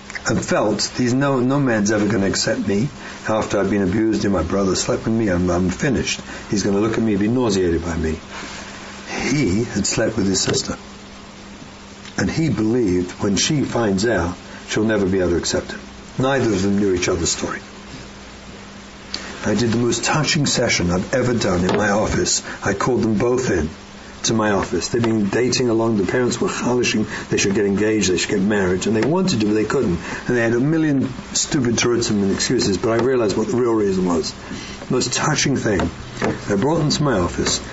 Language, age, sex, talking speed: English, 60-79, male, 210 wpm